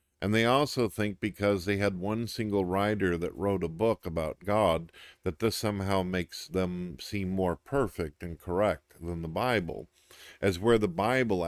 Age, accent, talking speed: 50-69, American, 175 wpm